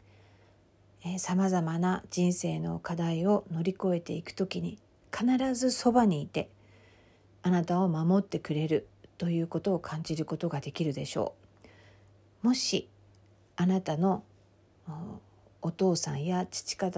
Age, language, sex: 50-69, Japanese, female